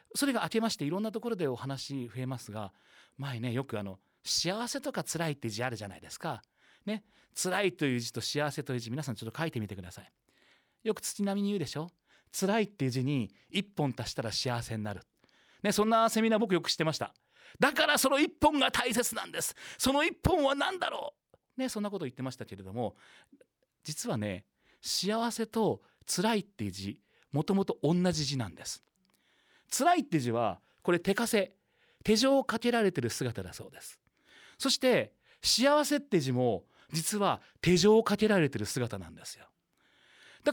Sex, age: male, 40-59